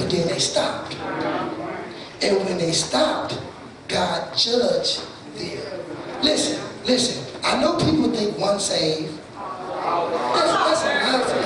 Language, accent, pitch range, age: English, American, 215-315 Hz, 30-49